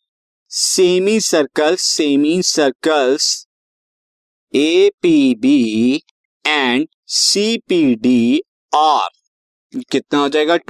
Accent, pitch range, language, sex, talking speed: native, 135-185 Hz, Hindi, male, 85 wpm